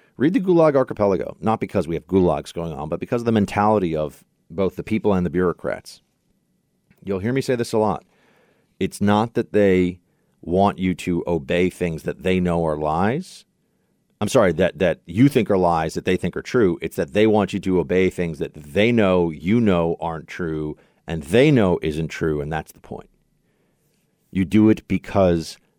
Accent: American